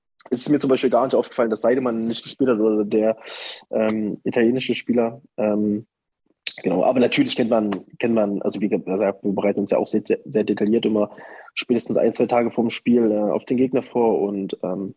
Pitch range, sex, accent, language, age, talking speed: 110-130 Hz, male, German, German, 20-39, 210 wpm